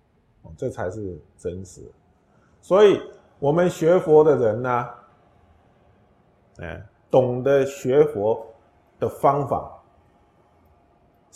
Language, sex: Chinese, male